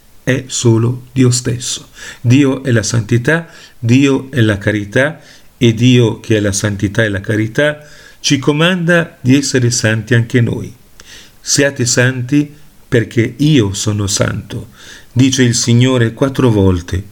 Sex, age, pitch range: male, 40-59, 105-135 Hz